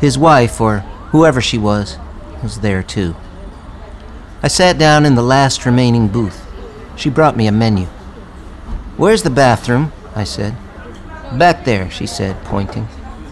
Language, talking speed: English, 145 wpm